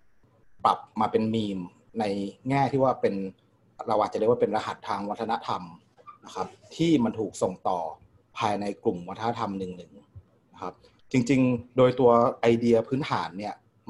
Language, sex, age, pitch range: Thai, male, 30-49, 105-130 Hz